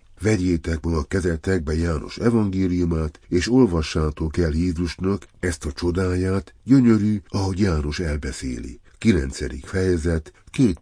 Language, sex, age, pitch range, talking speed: Hungarian, male, 60-79, 75-95 Hz, 105 wpm